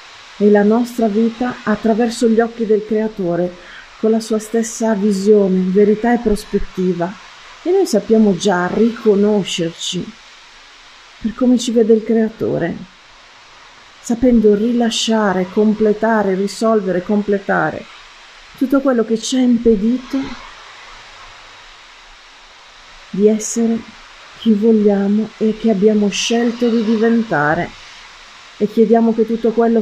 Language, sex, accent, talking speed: Italian, female, native, 110 wpm